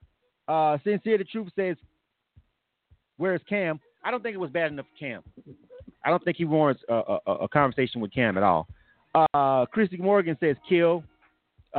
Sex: male